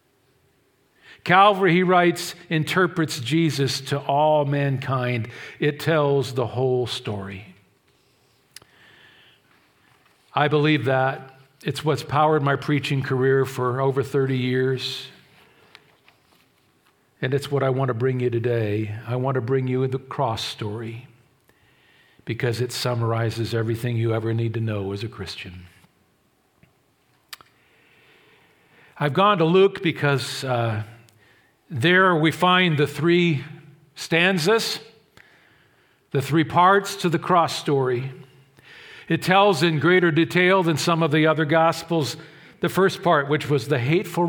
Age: 50-69